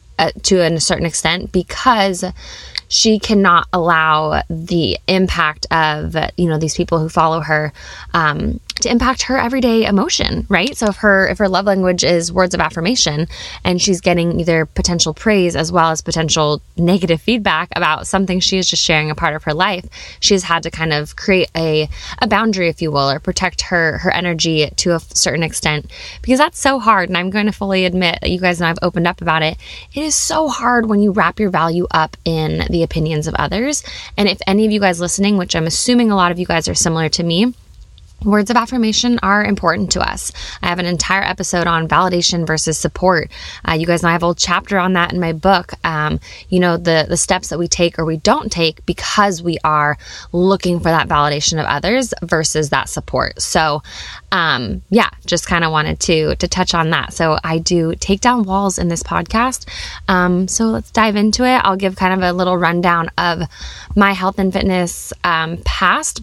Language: English